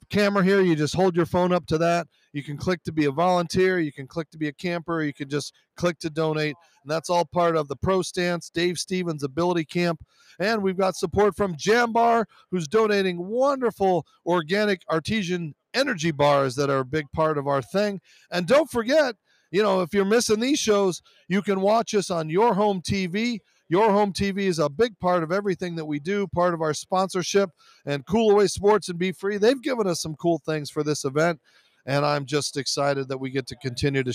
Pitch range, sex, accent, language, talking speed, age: 150-200 Hz, male, American, English, 220 wpm, 40-59